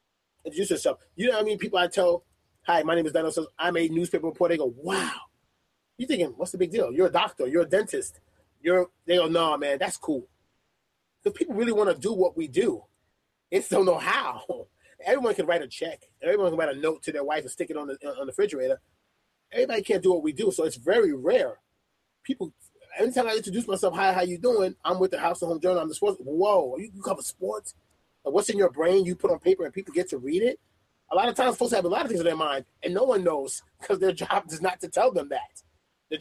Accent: American